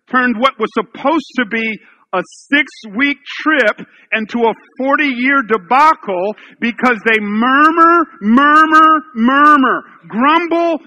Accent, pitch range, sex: American, 230-315 Hz, male